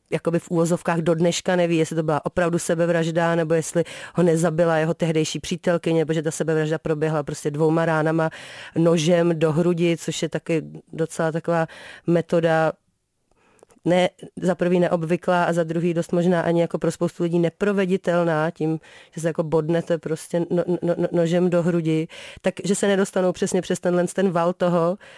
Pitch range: 165-180 Hz